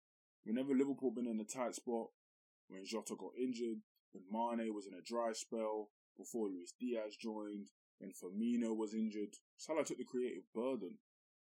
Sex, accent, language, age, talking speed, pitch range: male, British, English, 20-39, 165 wpm, 105-130 Hz